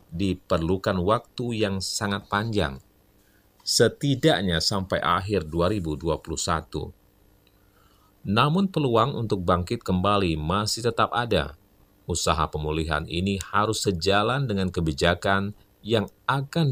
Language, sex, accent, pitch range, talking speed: Indonesian, male, native, 85-115 Hz, 95 wpm